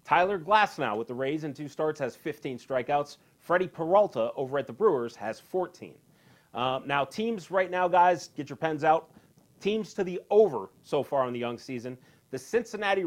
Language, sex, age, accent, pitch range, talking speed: English, male, 30-49, American, 125-175 Hz, 190 wpm